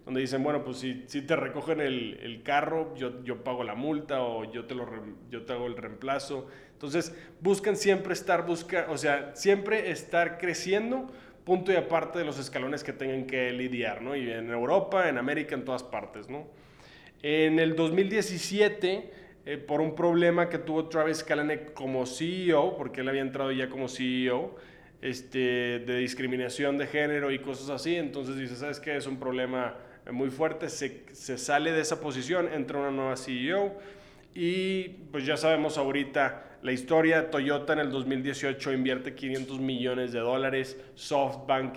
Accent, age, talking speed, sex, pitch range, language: Mexican, 20-39, 170 wpm, male, 125-155 Hz, English